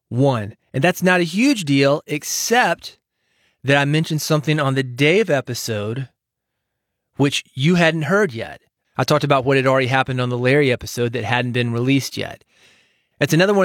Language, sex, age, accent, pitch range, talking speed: English, male, 30-49, American, 120-160 Hz, 175 wpm